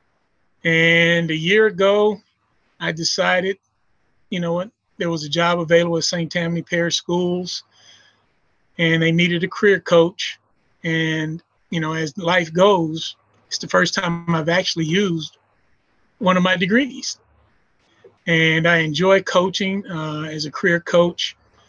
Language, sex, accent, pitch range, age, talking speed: English, male, American, 155-175 Hz, 30-49, 140 wpm